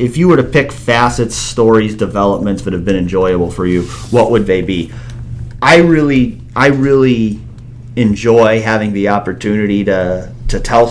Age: 30-49